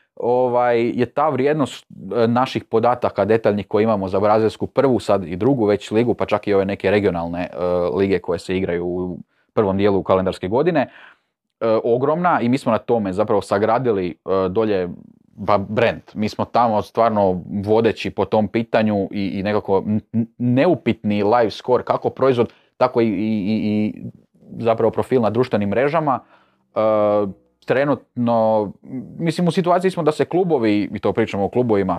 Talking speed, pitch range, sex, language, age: 165 wpm, 100-125 Hz, male, Croatian, 30-49